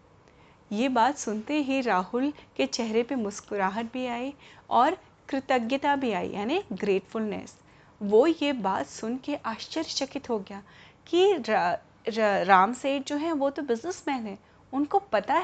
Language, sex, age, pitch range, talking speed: Hindi, female, 30-49, 210-280 Hz, 150 wpm